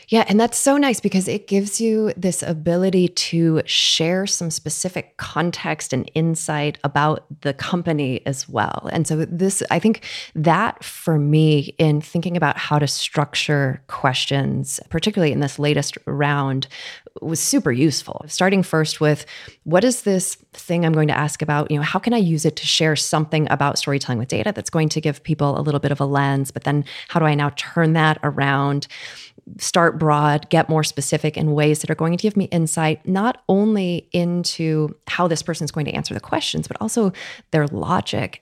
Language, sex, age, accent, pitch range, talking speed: English, female, 30-49, American, 145-175 Hz, 190 wpm